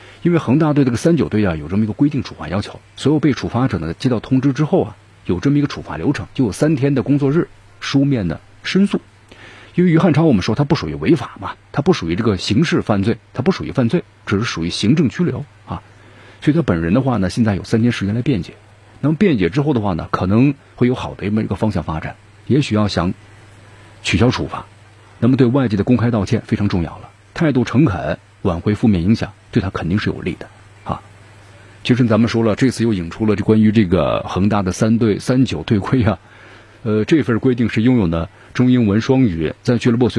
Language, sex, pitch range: Chinese, male, 100-125 Hz